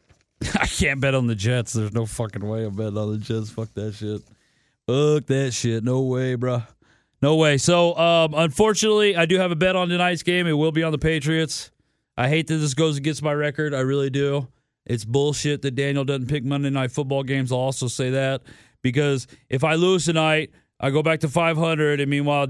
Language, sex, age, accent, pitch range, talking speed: English, male, 30-49, American, 130-165 Hz, 215 wpm